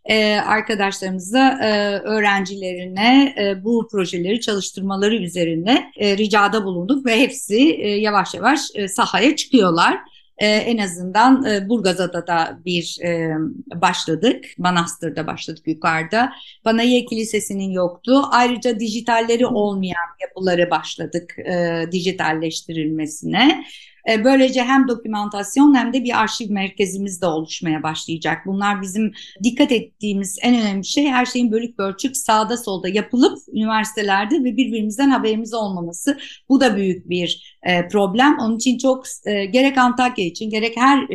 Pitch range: 190-250 Hz